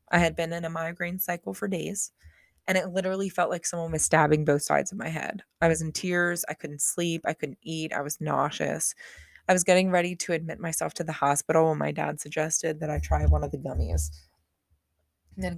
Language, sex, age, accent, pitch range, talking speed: English, female, 20-39, American, 145-175 Hz, 220 wpm